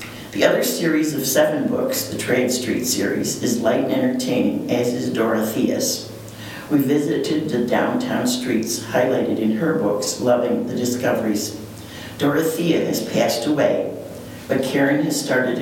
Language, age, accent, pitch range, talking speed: English, 60-79, American, 115-160 Hz, 140 wpm